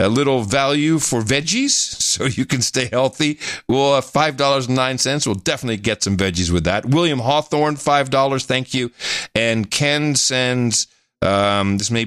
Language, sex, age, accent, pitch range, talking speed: English, male, 50-69, American, 90-125 Hz, 180 wpm